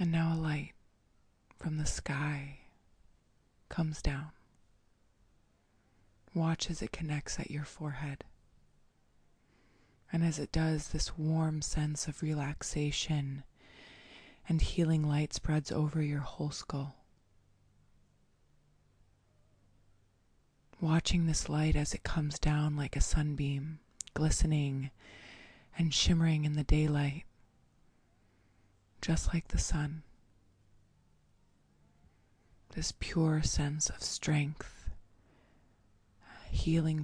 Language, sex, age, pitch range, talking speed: English, female, 20-39, 100-155 Hz, 95 wpm